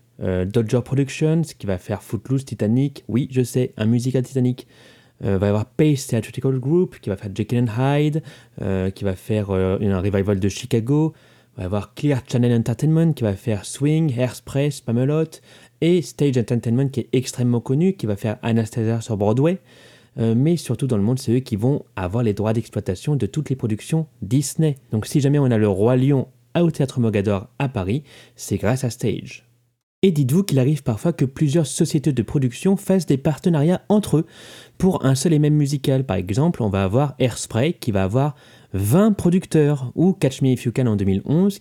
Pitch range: 115-150 Hz